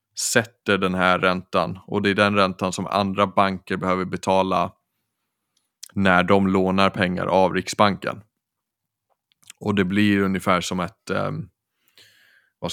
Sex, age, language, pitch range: male, 20-39, Swedish, 90-100 Hz